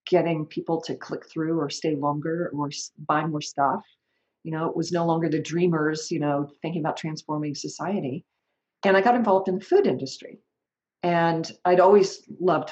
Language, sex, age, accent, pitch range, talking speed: English, female, 50-69, American, 150-175 Hz, 180 wpm